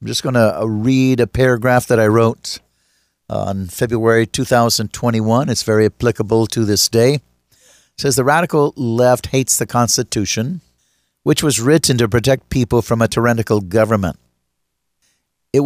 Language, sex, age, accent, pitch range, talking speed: English, male, 50-69, American, 110-135 Hz, 145 wpm